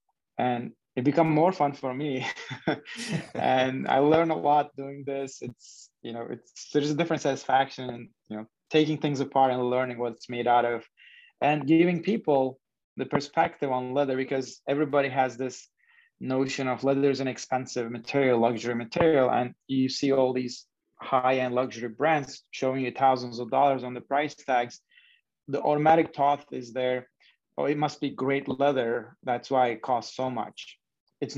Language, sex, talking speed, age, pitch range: English, male, 170 wpm, 20-39, 120-145 Hz